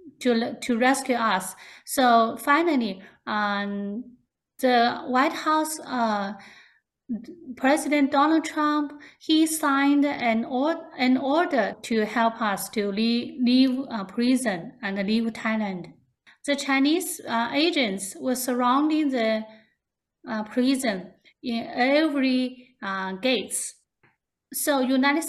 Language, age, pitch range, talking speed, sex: English, 30-49, 220-275 Hz, 110 wpm, female